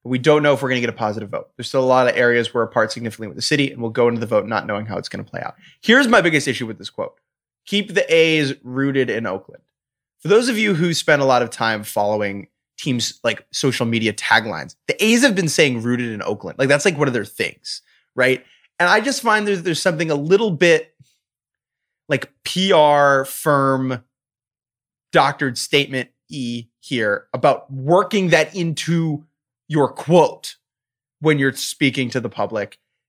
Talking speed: 200 wpm